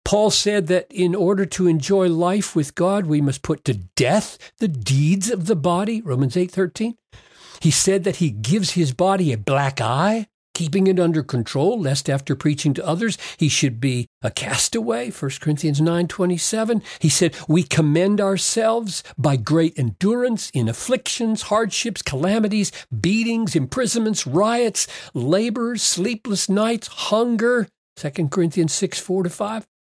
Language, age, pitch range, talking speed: English, 60-79, 140-205 Hz, 140 wpm